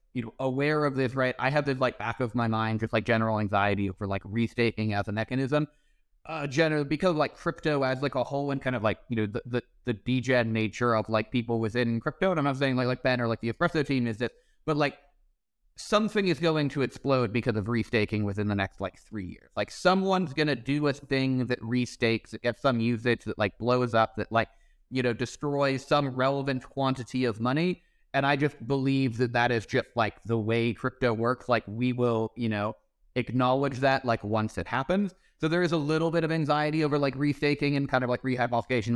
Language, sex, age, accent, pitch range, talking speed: English, male, 30-49, American, 115-140 Hz, 225 wpm